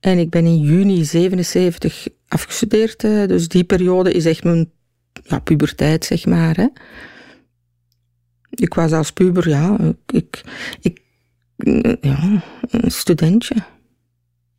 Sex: female